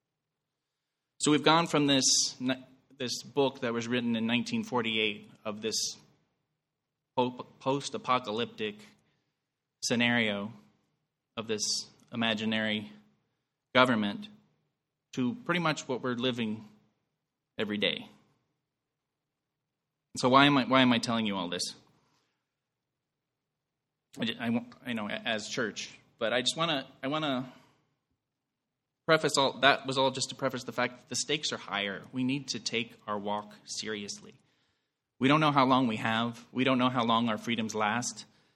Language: English